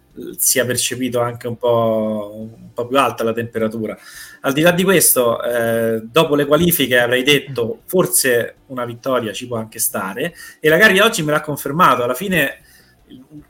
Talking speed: 180 wpm